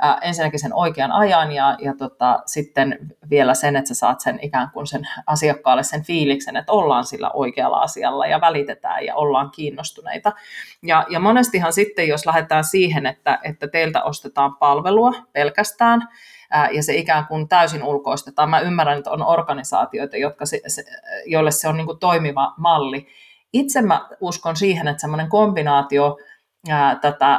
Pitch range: 145-185 Hz